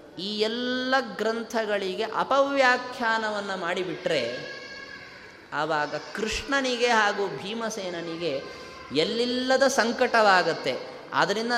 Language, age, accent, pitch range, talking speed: Kannada, 20-39, native, 165-235 Hz, 60 wpm